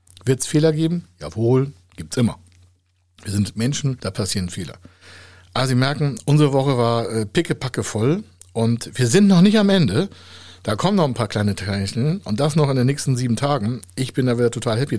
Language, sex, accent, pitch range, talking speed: German, male, German, 95-140 Hz, 205 wpm